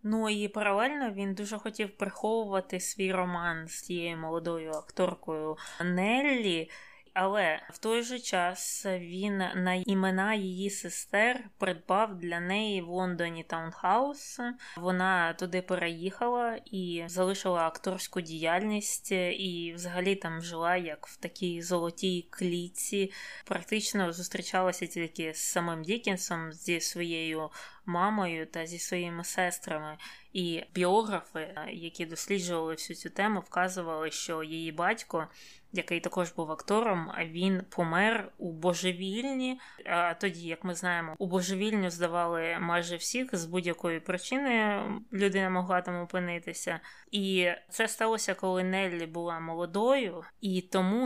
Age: 20-39